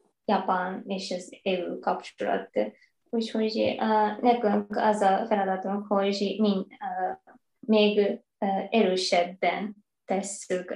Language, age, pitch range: Hungarian, 20-39, 190-235 Hz